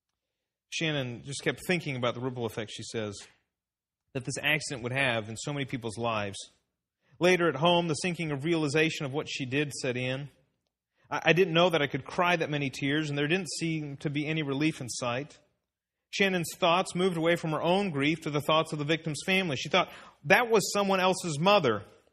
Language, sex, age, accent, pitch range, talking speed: English, male, 40-59, American, 135-180 Hz, 205 wpm